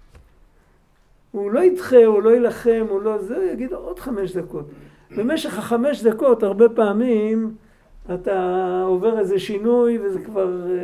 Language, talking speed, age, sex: Hebrew, 140 wpm, 50-69, male